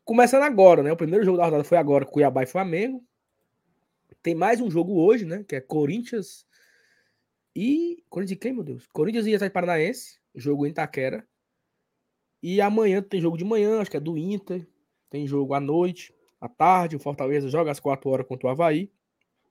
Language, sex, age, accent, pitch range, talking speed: Portuguese, male, 20-39, Brazilian, 155-210 Hz, 185 wpm